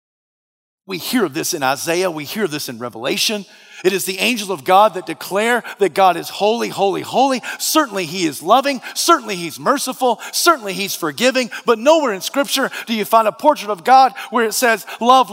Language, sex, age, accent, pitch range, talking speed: English, male, 40-59, American, 160-265 Hz, 190 wpm